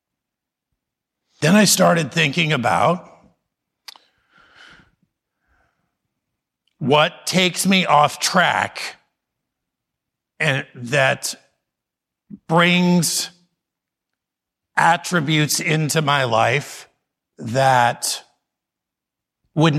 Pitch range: 145-185 Hz